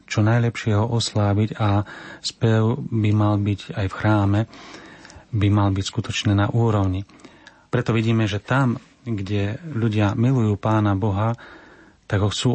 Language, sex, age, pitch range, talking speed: Slovak, male, 40-59, 100-120 Hz, 145 wpm